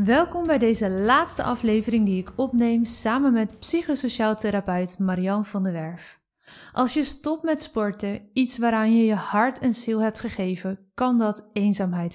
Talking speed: 165 wpm